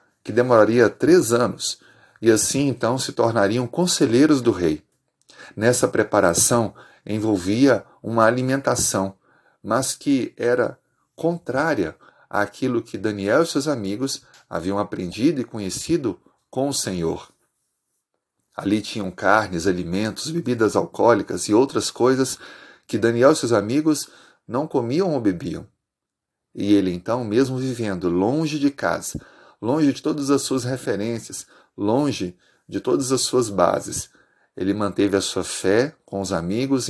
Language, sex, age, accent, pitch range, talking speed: Portuguese, male, 40-59, Brazilian, 100-135 Hz, 130 wpm